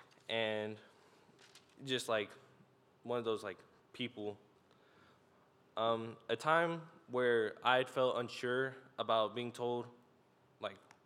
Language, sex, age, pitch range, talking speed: English, male, 10-29, 105-130 Hz, 105 wpm